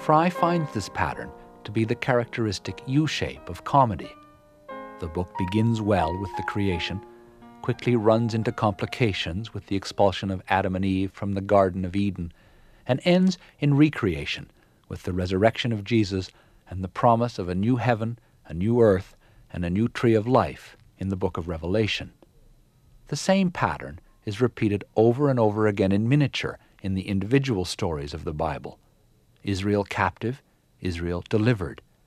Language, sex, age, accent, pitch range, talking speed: English, male, 50-69, American, 95-125 Hz, 160 wpm